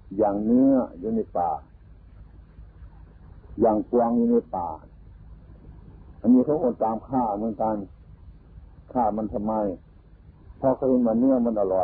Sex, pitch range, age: male, 85-120 Hz, 60-79